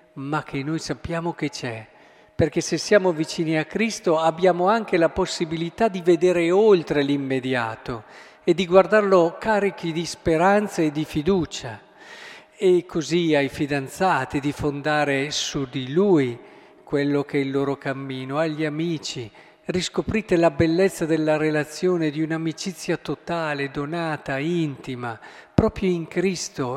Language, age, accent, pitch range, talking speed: Italian, 50-69, native, 150-195 Hz, 130 wpm